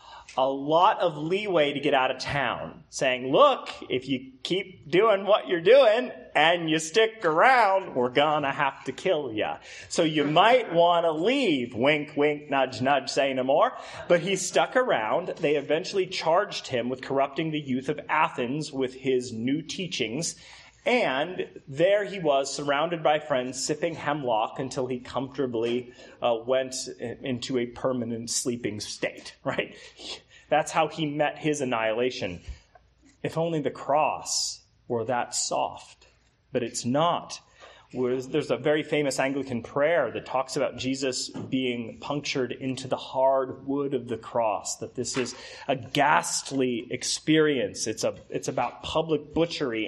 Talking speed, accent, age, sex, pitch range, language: 150 wpm, American, 30-49, male, 125-160 Hz, English